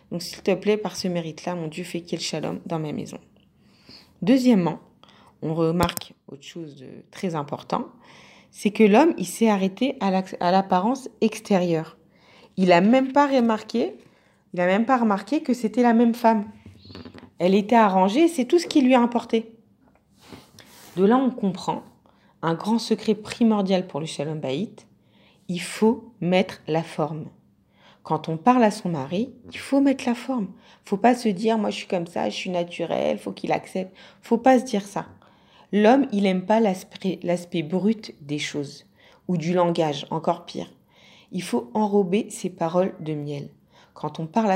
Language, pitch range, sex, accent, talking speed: French, 165-225 Hz, female, French, 180 wpm